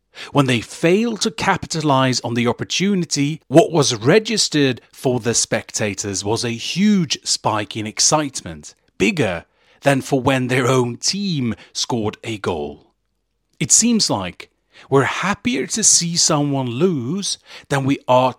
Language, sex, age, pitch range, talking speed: English, male, 40-59, 105-145 Hz, 135 wpm